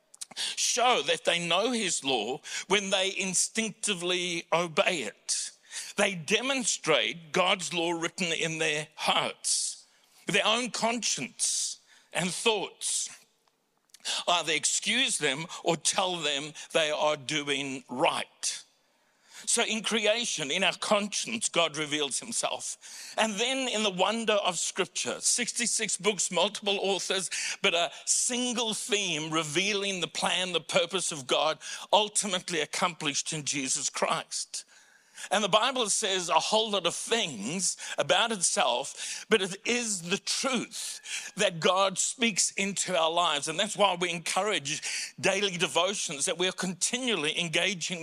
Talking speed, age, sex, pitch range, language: 130 wpm, 60-79, male, 165-215 Hz, English